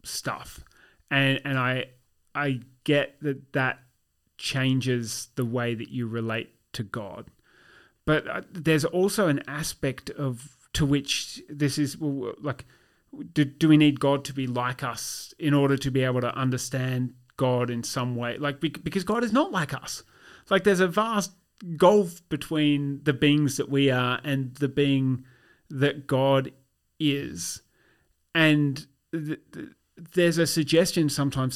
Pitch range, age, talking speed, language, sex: 130-155 Hz, 30-49, 150 wpm, English, male